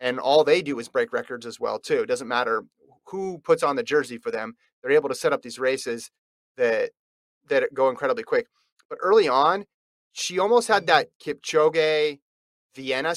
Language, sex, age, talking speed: English, male, 30-49, 180 wpm